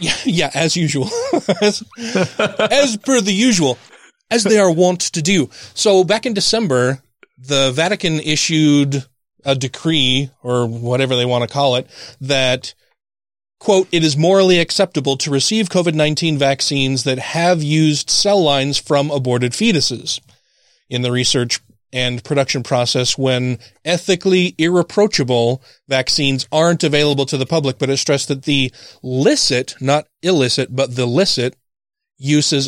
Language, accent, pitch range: English, American, 130-165 Hz